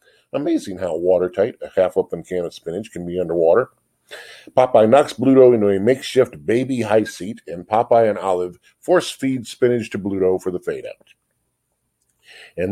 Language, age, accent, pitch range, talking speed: English, 50-69, American, 95-120 Hz, 150 wpm